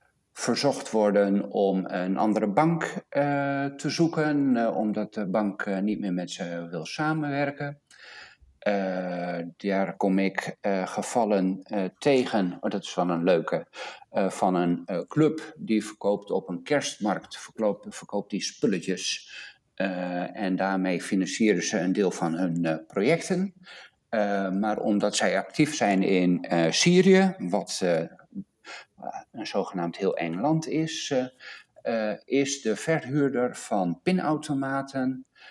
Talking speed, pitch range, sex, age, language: 140 wpm, 95-150 Hz, male, 50-69, Dutch